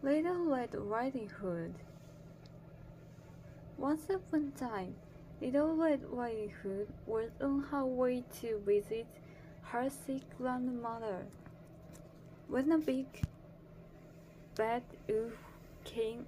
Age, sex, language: 20-39, female, Japanese